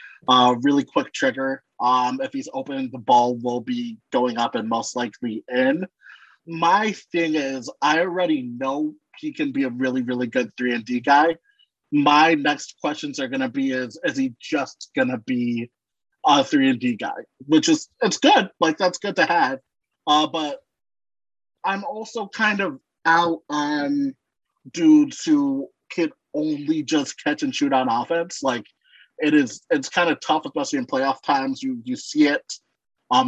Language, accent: English, American